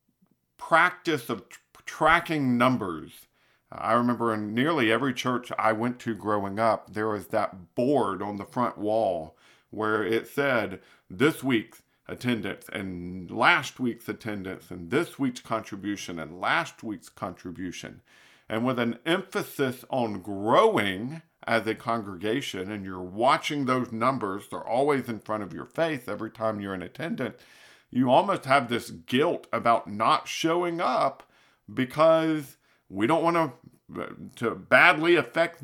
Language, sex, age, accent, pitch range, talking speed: English, male, 50-69, American, 110-145 Hz, 140 wpm